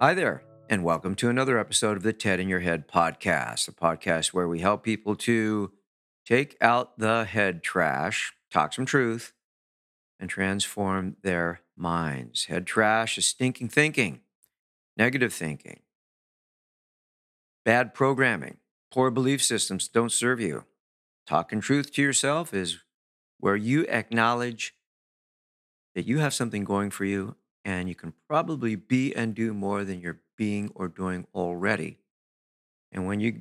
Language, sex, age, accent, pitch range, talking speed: English, male, 50-69, American, 95-130 Hz, 145 wpm